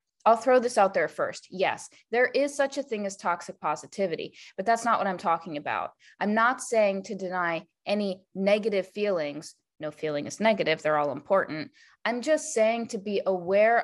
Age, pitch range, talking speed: 20-39, 185-225 Hz, 185 wpm